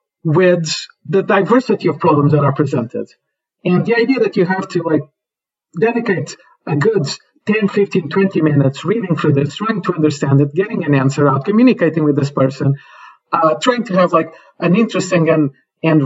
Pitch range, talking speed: 150-195 Hz, 175 wpm